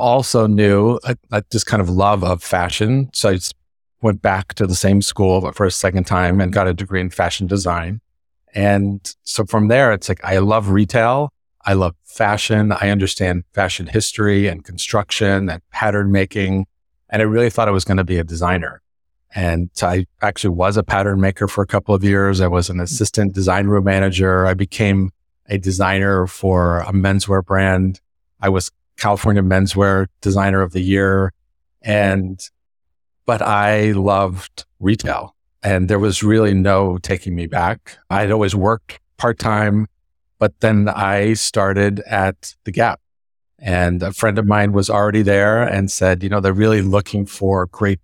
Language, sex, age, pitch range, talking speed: English, male, 40-59, 90-105 Hz, 170 wpm